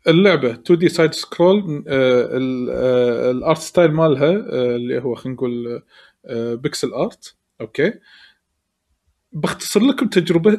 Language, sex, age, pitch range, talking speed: Arabic, male, 20-39, 125-170 Hz, 120 wpm